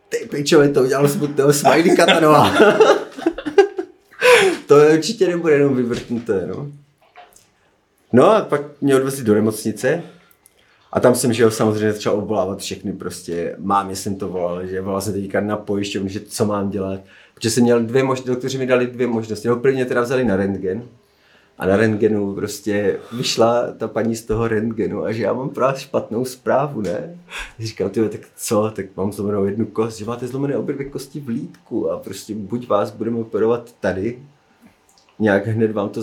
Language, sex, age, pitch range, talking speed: Slovak, male, 30-49, 100-125 Hz, 175 wpm